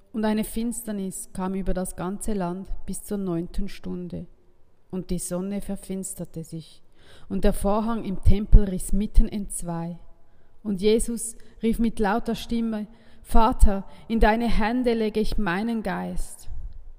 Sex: female